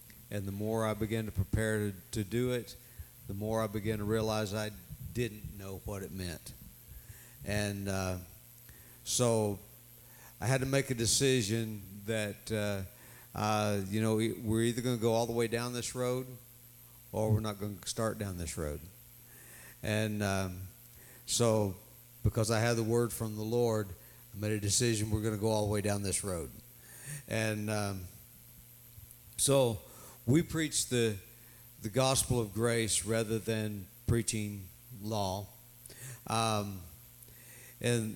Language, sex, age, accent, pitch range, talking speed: English, male, 60-79, American, 105-120 Hz, 155 wpm